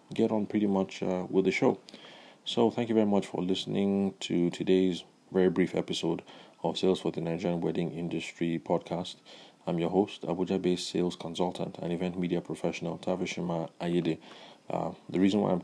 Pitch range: 85-95 Hz